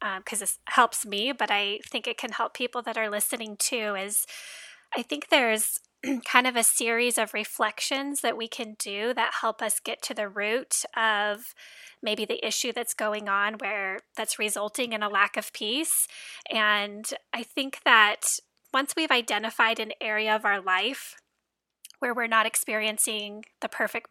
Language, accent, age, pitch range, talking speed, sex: English, American, 20-39, 215-255 Hz, 175 wpm, female